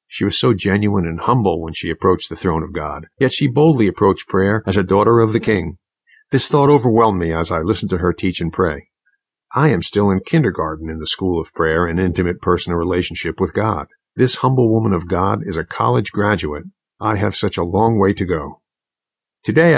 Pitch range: 90-115 Hz